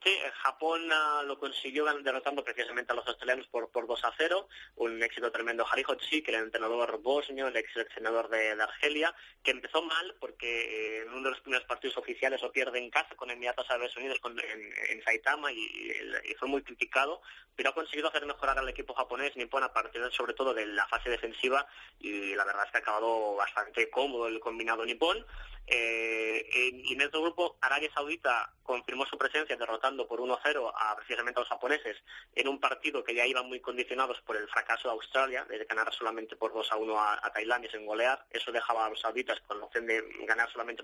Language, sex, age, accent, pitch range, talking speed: Spanish, male, 20-39, Spanish, 115-150 Hz, 205 wpm